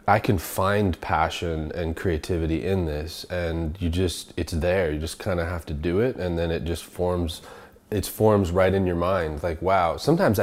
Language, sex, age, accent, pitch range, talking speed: English, male, 20-39, American, 85-100 Hz, 200 wpm